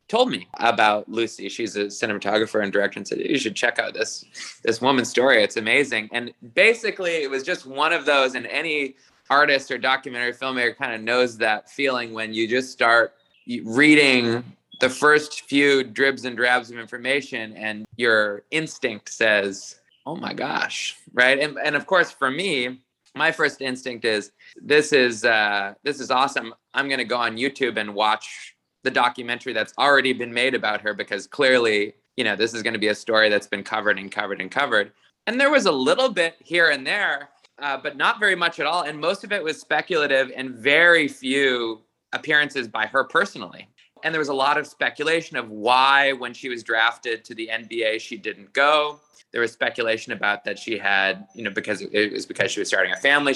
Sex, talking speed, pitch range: male, 200 wpm, 110-145 Hz